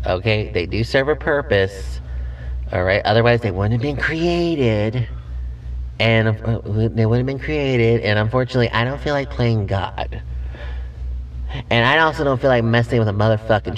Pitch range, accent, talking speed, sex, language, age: 100-130 Hz, American, 175 wpm, male, English, 30-49